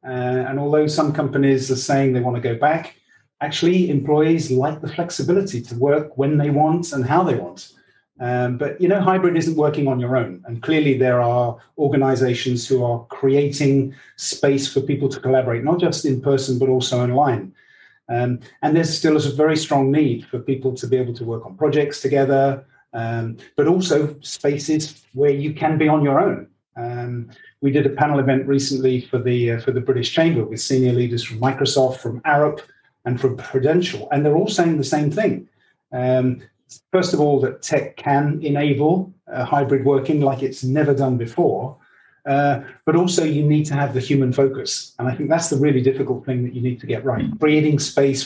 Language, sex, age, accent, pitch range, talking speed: English, male, 30-49, British, 130-150 Hz, 195 wpm